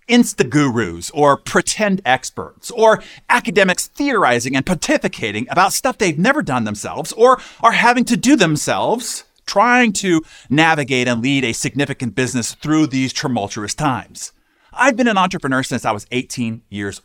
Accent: American